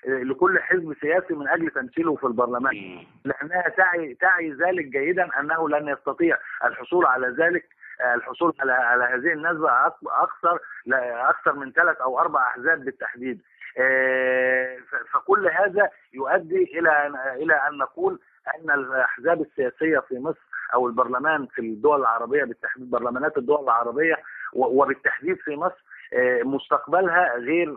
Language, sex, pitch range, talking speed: Arabic, male, 130-175 Hz, 125 wpm